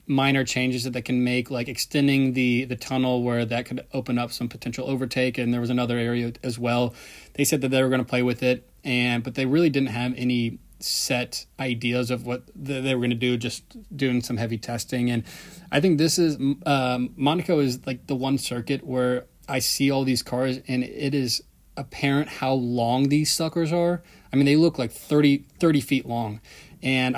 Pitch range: 120-135 Hz